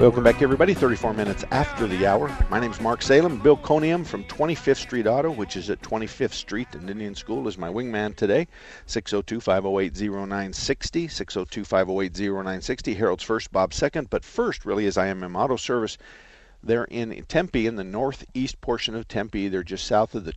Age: 50-69